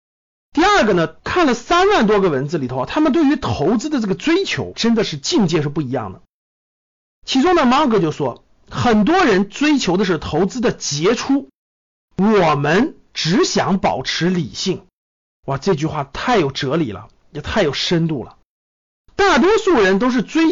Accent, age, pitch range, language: native, 50-69, 160-265 Hz, Chinese